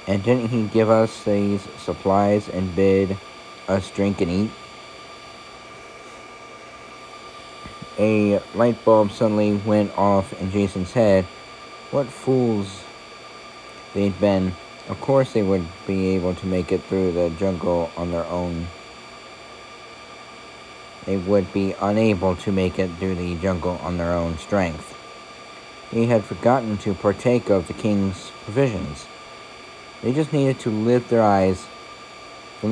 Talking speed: 130 wpm